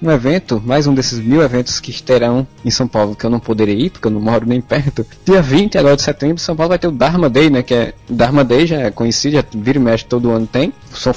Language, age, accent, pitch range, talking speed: Portuguese, 20-39, Brazilian, 115-145 Hz, 280 wpm